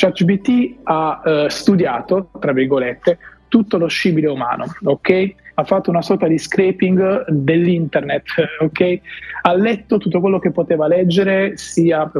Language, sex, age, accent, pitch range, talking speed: Italian, male, 30-49, native, 155-190 Hz, 145 wpm